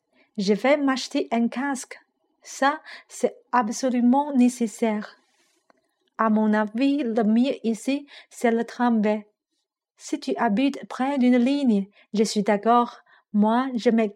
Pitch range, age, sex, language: 220-265 Hz, 50-69, female, Chinese